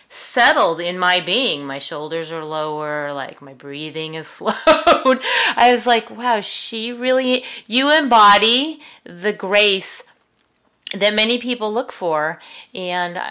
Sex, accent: female, American